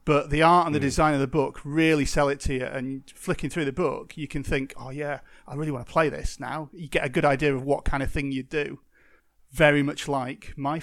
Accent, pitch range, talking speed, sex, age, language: British, 135-155 Hz, 260 wpm, male, 40-59, English